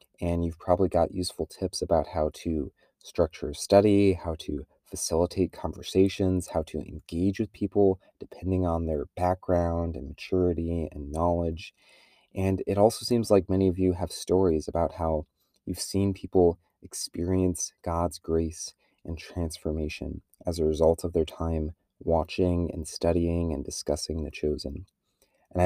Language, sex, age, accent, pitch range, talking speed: English, male, 30-49, American, 80-95 Hz, 145 wpm